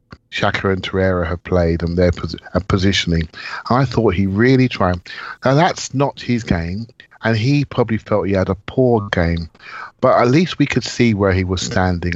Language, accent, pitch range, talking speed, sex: English, British, 90-120 Hz, 195 wpm, male